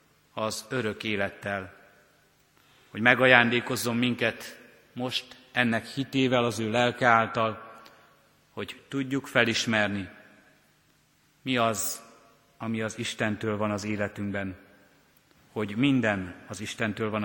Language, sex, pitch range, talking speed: Hungarian, male, 105-125 Hz, 100 wpm